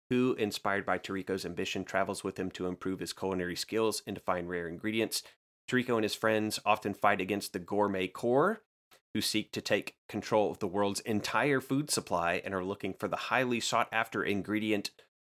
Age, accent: 30-49, American